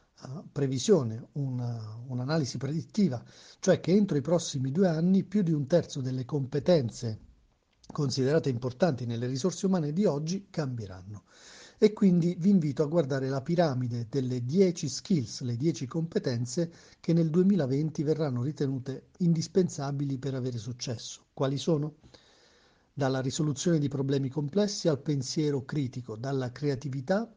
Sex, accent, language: male, native, Italian